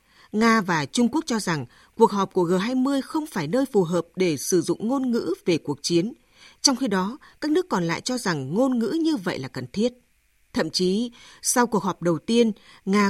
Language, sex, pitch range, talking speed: Vietnamese, female, 175-245 Hz, 215 wpm